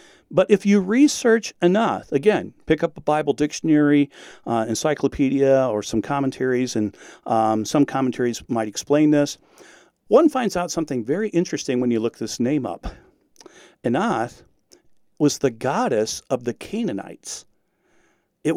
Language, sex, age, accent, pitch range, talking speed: English, male, 50-69, American, 135-205 Hz, 140 wpm